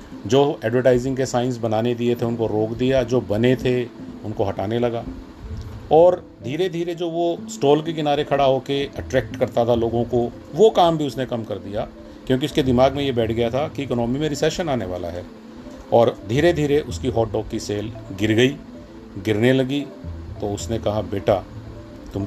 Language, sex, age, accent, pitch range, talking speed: Hindi, male, 40-59, native, 110-135 Hz, 190 wpm